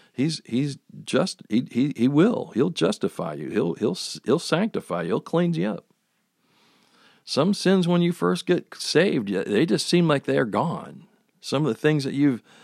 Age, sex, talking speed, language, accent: 50-69, male, 180 wpm, English, American